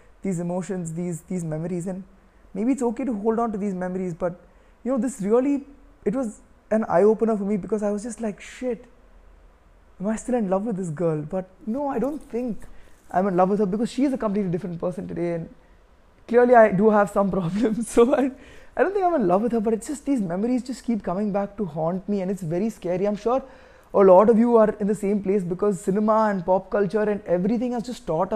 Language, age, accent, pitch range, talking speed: Tamil, 20-39, native, 185-225 Hz, 250 wpm